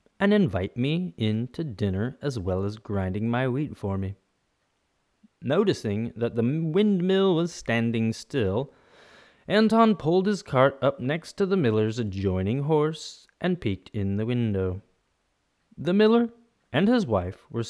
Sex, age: male, 30-49